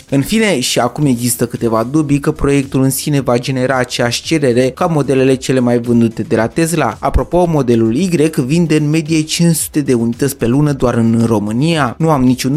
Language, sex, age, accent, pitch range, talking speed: Romanian, male, 20-39, native, 125-160 Hz, 190 wpm